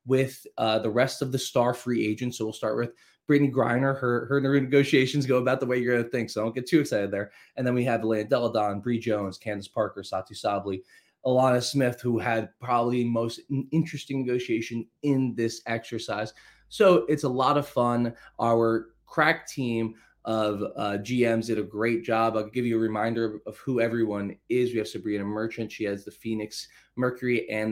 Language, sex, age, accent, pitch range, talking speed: English, male, 20-39, American, 105-130 Hz, 195 wpm